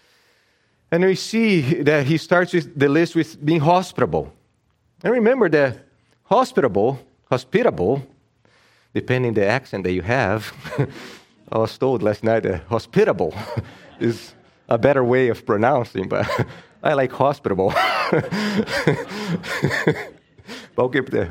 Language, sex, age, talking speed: English, male, 30-49, 115 wpm